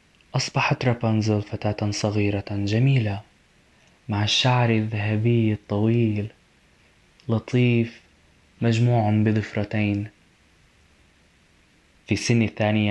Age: 20-39